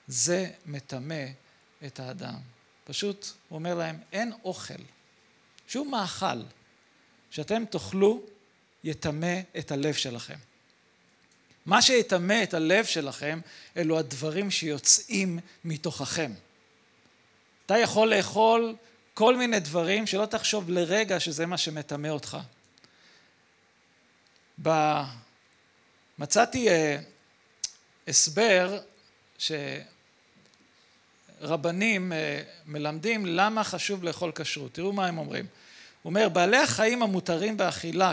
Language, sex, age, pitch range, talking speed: Hebrew, male, 40-59, 155-210 Hz, 95 wpm